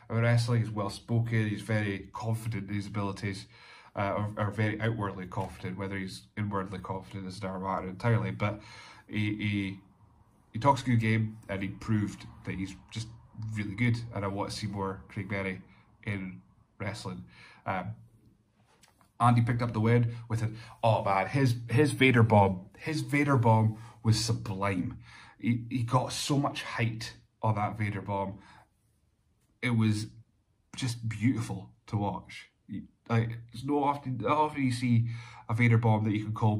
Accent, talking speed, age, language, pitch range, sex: British, 170 wpm, 30-49, English, 105-115 Hz, male